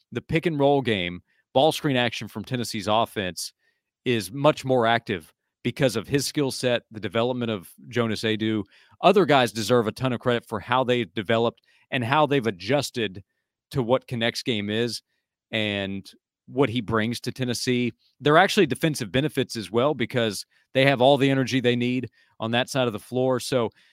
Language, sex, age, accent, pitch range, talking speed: English, male, 40-59, American, 115-140 Hz, 175 wpm